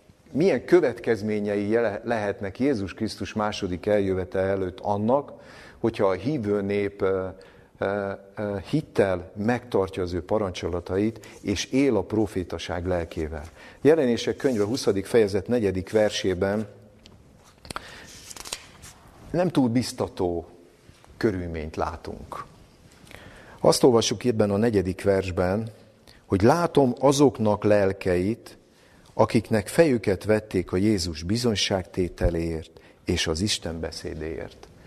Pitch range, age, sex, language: 95-115 Hz, 50-69, male, Hungarian